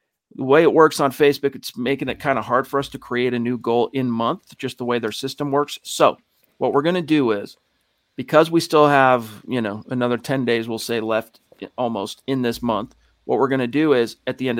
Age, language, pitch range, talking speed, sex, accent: 40-59, English, 120-145 Hz, 245 wpm, male, American